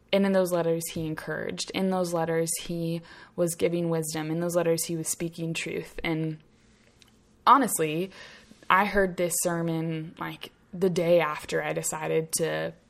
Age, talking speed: 20-39, 155 wpm